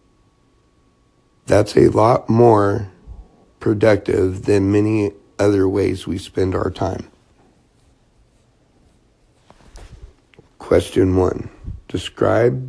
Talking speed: 75 wpm